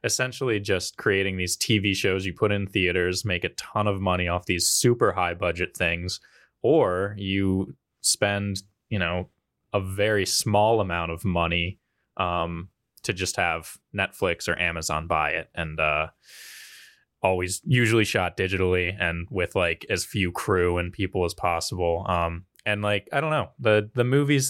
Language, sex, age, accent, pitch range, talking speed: English, male, 20-39, American, 90-110 Hz, 160 wpm